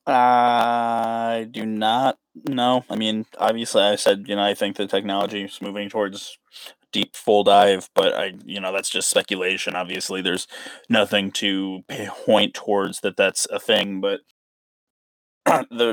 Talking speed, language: 155 wpm, English